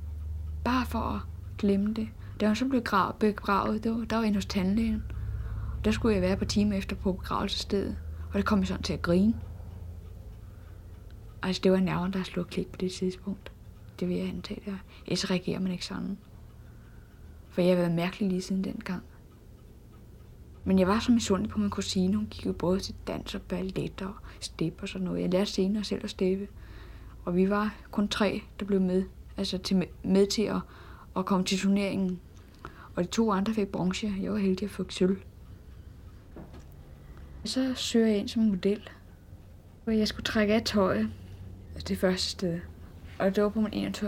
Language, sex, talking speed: Danish, female, 185 wpm